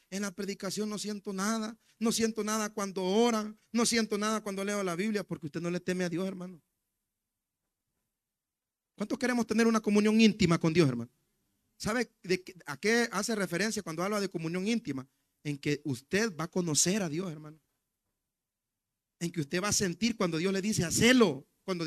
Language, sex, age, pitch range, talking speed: Spanish, male, 40-59, 195-260 Hz, 185 wpm